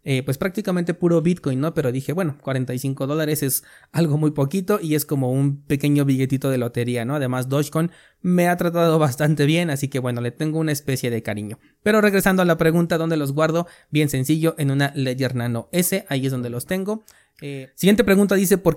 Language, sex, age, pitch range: Spanish, male, 30-49, 130-170 Hz